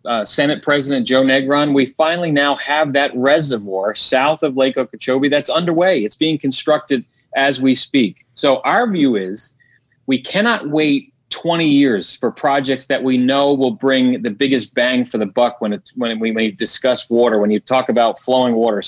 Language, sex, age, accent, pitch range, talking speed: English, male, 30-49, American, 130-165 Hz, 180 wpm